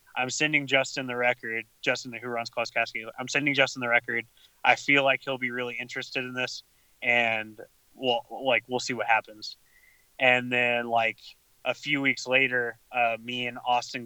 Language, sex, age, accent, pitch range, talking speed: English, male, 20-39, American, 120-140 Hz, 185 wpm